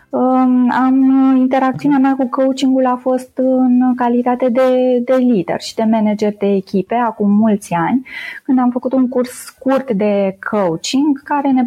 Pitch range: 205-270 Hz